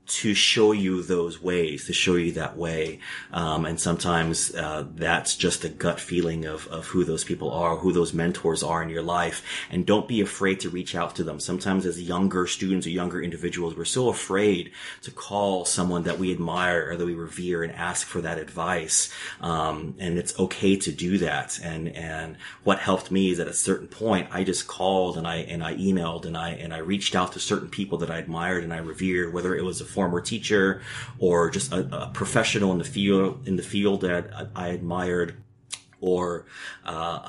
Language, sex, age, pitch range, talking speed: English, male, 30-49, 85-100 Hz, 210 wpm